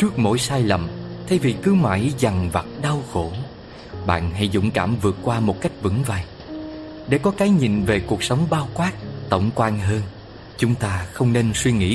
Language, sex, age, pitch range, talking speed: Vietnamese, male, 20-39, 100-135 Hz, 200 wpm